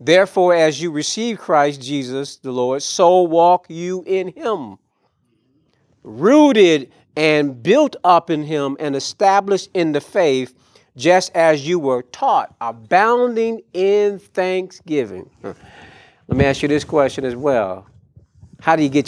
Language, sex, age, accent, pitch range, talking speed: English, male, 40-59, American, 135-180 Hz, 140 wpm